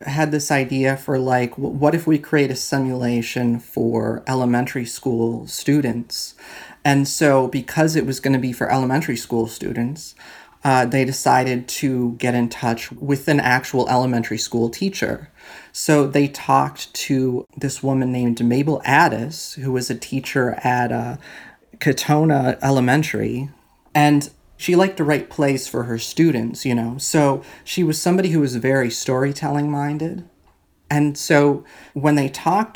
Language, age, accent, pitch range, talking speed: English, 30-49, American, 120-145 Hz, 150 wpm